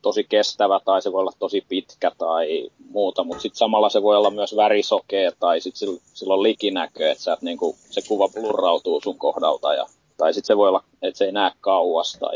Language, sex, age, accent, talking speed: Finnish, male, 20-39, native, 205 wpm